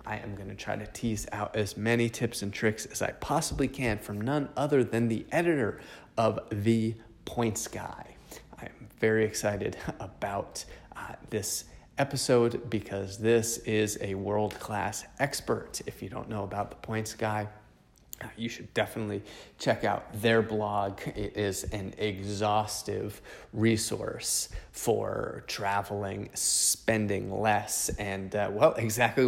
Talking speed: 140 wpm